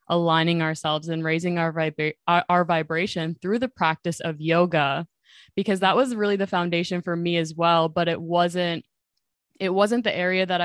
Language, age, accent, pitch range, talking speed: English, 20-39, American, 165-185 Hz, 175 wpm